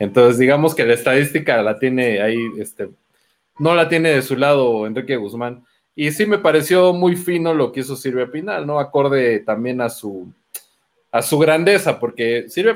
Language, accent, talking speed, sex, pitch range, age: Spanish, Mexican, 180 wpm, male, 125-165 Hz, 30-49